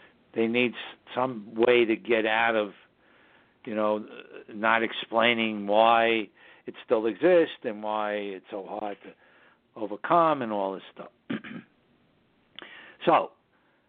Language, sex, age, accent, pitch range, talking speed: English, male, 60-79, American, 110-125 Hz, 120 wpm